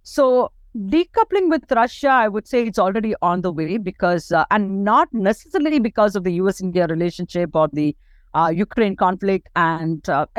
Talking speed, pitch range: 175 wpm, 170-210 Hz